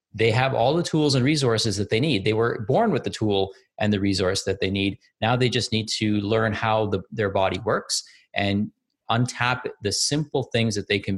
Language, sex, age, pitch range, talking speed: English, male, 30-49, 100-125 Hz, 215 wpm